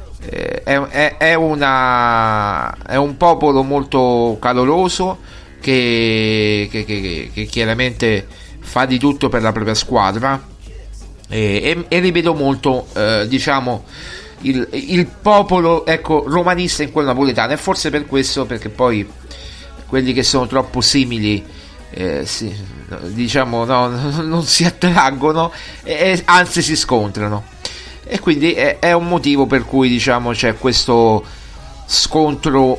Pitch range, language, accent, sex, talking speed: 110-140 Hz, Italian, native, male, 130 wpm